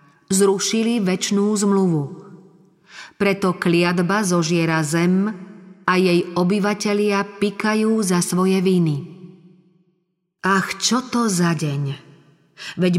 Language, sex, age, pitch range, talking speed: Slovak, female, 30-49, 160-190 Hz, 90 wpm